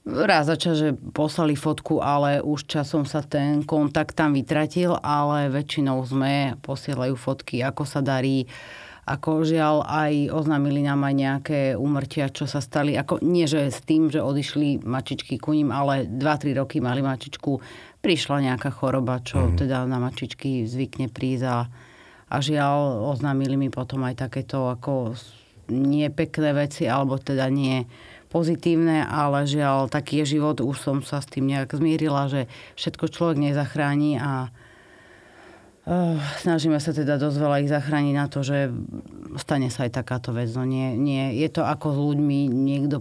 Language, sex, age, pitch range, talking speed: Slovak, female, 30-49, 130-150 Hz, 155 wpm